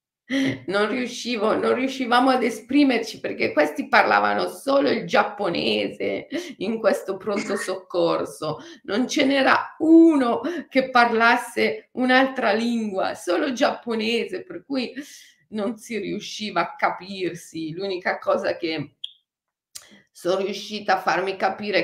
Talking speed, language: 115 wpm, Italian